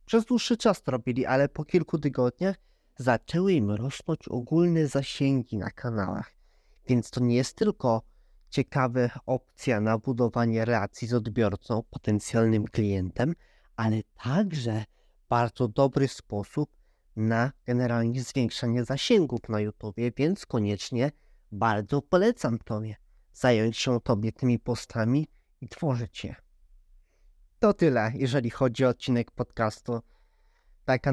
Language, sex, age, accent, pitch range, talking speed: Polish, male, 20-39, native, 115-135 Hz, 120 wpm